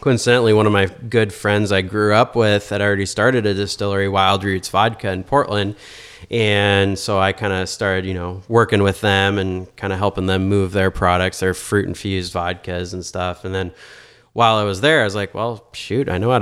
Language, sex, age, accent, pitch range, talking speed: English, male, 20-39, American, 95-110 Hz, 215 wpm